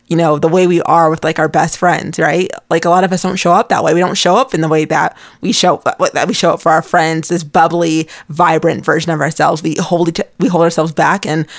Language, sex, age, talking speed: English, female, 20-39, 270 wpm